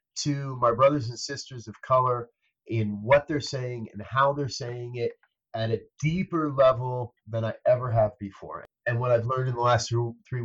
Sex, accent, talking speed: male, American, 195 wpm